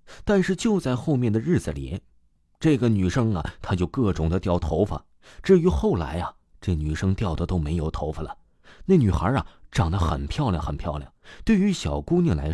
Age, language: 30-49, Chinese